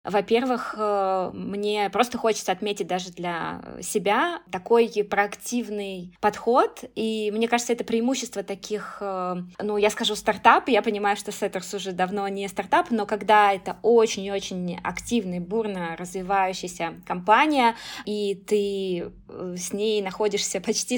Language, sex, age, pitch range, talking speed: Russian, female, 20-39, 200-230 Hz, 125 wpm